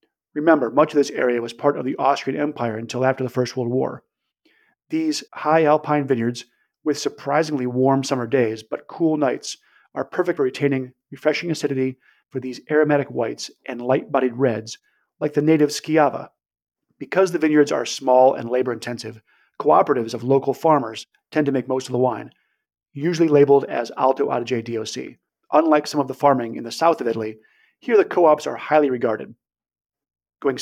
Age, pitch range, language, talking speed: 40-59, 125-150 Hz, English, 170 wpm